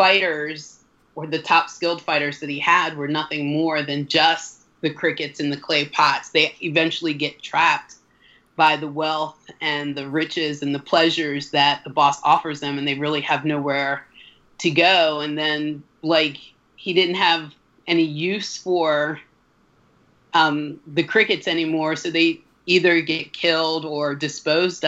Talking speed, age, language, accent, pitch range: 155 wpm, 30-49, English, American, 145-165 Hz